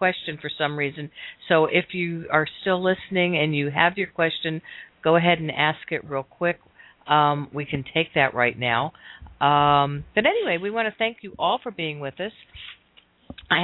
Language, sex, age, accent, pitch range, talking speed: English, female, 50-69, American, 135-175 Hz, 190 wpm